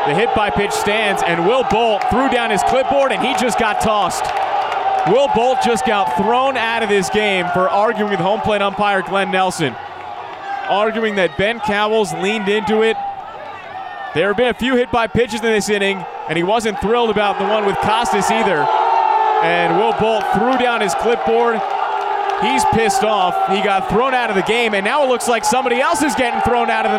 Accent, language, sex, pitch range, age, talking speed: American, English, male, 205-280 Hz, 30-49, 195 wpm